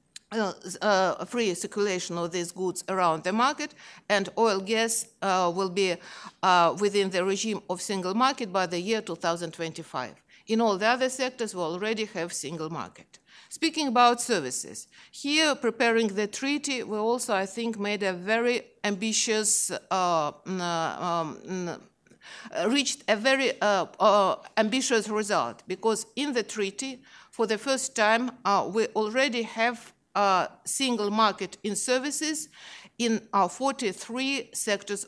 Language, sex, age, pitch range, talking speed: English, female, 50-69, 185-235 Hz, 135 wpm